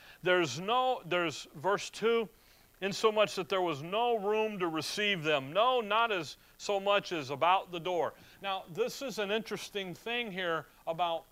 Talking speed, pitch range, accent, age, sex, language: 165 wpm, 150-210 Hz, American, 40-59, male, English